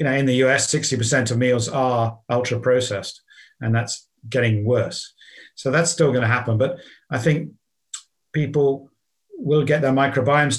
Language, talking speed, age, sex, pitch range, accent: English, 165 wpm, 50-69, male, 120-140 Hz, British